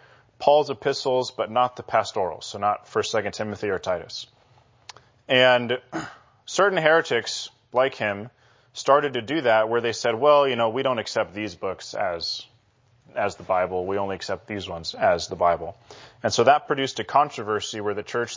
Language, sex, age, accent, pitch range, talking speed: English, male, 30-49, American, 110-130 Hz, 175 wpm